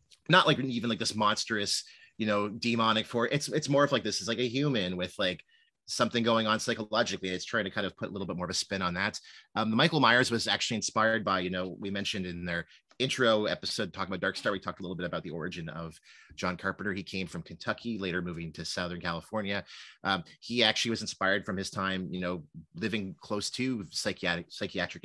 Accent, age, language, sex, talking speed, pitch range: American, 30-49, English, male, 225 wpm, 90-115 Hz